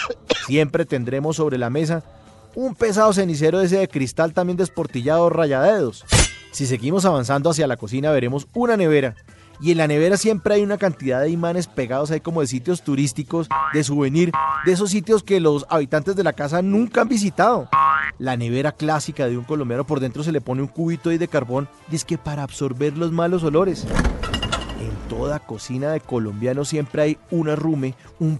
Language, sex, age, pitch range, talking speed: Spanish, male, 30-49, 145-195 Hz, 180 wpm